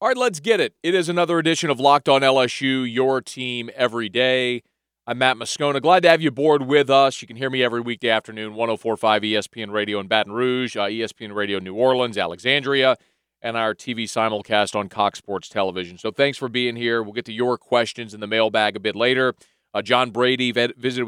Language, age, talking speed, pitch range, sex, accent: English, 30-49, 210 wpm, 110-130 Hz, male, American